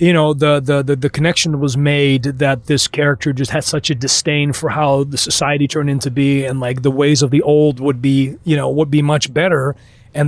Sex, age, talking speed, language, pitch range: male, 30-49, 230 wpm, English, 135-155 Hz